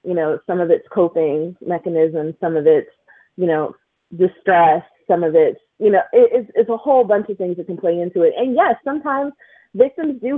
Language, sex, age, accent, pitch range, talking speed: English, female, 30-49, American, 180-295 Hz, 200 wpm